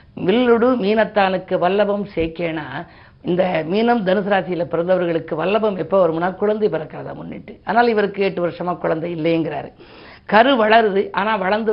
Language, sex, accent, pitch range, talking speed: Tamil, female, native, 165-205 Hz, 130 wpm